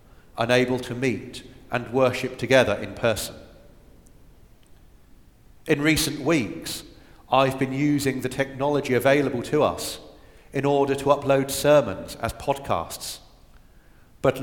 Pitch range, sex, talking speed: 120-140 Hz, male, 110 wpm